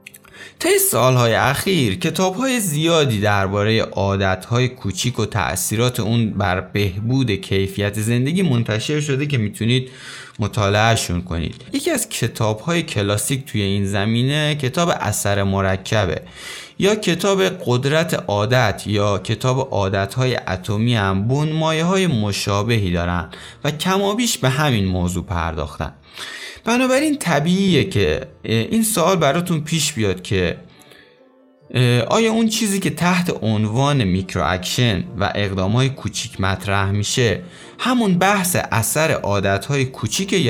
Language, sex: Persian, male